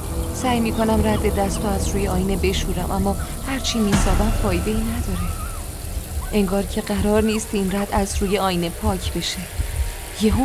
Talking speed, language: 155 wpm, Persian